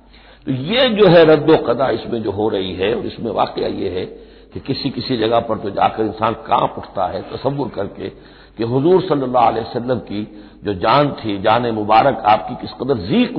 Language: Hindi